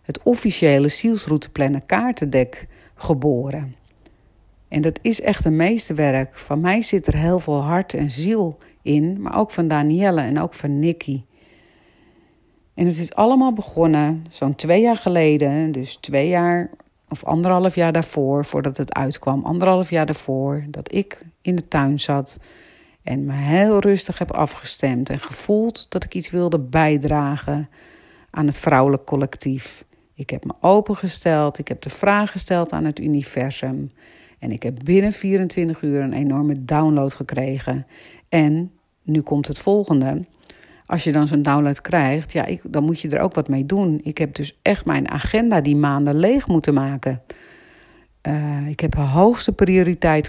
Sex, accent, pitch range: female, Dutch, 140-180 Hz